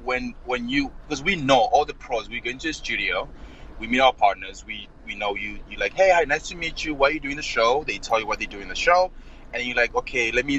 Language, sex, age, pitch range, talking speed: English, male, 20-39, 115-170 Hz, 290 wpm